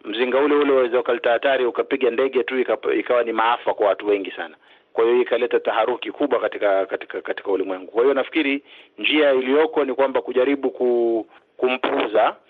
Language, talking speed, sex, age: Swahili, 165 wpm, male, 40-59